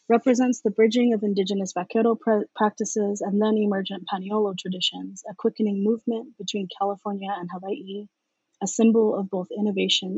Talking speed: 145 wpm